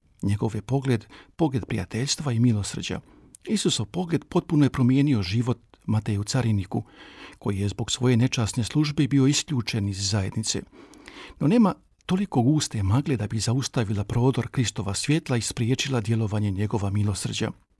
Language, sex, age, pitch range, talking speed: Croatian, male, 50-69, 110-145 Hz, 140 wpm